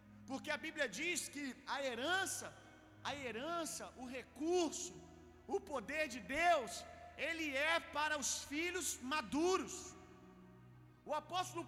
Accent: Brazilian